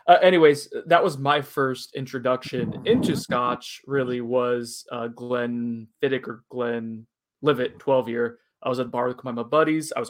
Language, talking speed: English, 165 wpm